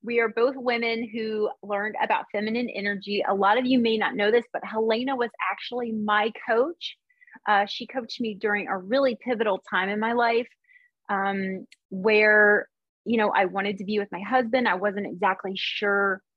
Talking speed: 185 wpm